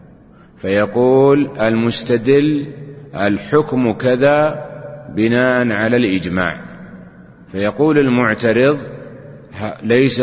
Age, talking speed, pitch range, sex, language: 30-49, 60 wpm, 105-125 Hz, male, Arabic